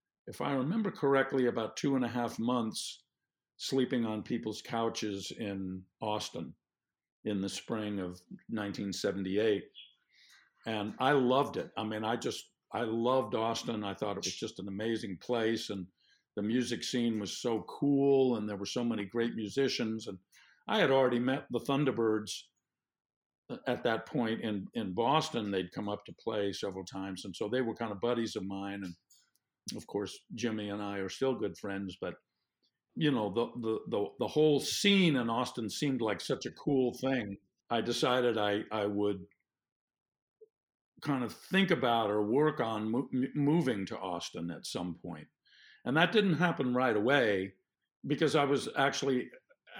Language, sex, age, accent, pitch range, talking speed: English, male, 50-69, American, 100-125 Hz, 165 wpm